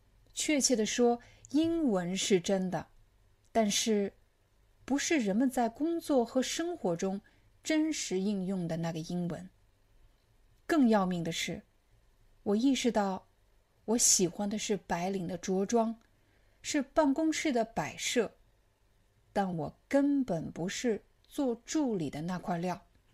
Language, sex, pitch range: Chinese, female, 155-245 Hz